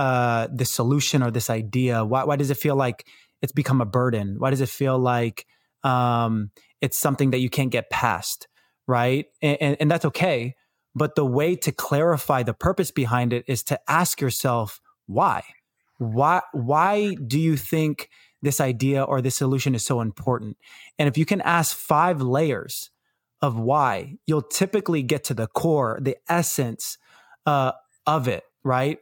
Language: English